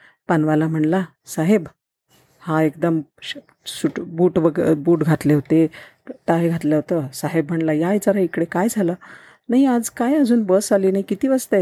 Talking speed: 150 wpm